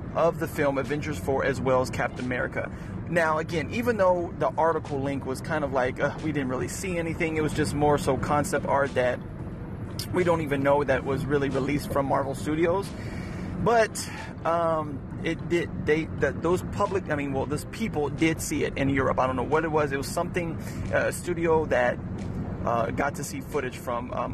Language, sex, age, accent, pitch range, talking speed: English, male, 30-49, American, 135-160 Hz, 205 wpm